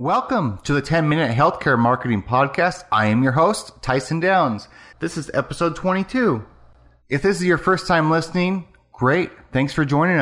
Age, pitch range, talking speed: 30-49, 105-155 Hz, 165 wpm